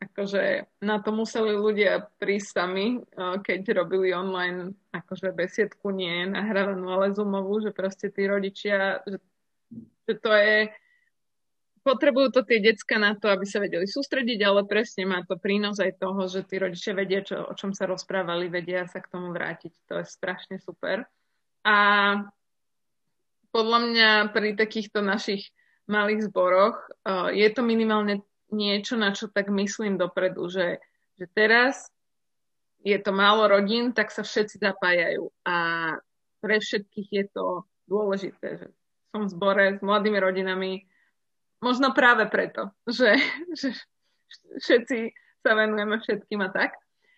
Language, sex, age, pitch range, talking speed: Slovak, female, 20-39, 190-220 Hz, 140 wpm